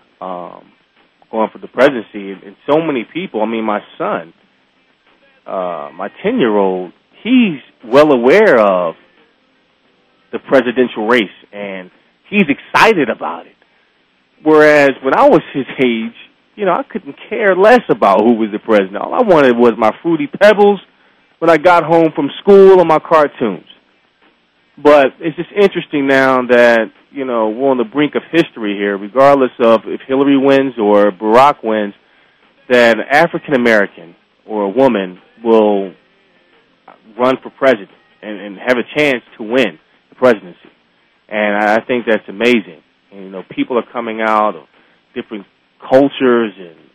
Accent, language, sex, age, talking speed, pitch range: American, English, male, 30-49, 155 wpm, 105-145 Hz